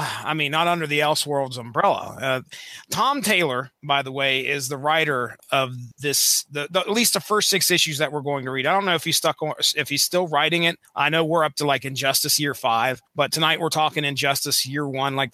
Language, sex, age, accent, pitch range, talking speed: English, male, 30-49, American, 140-180 Hz, 235 wpm